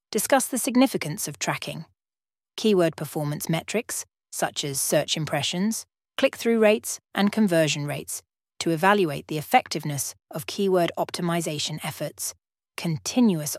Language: English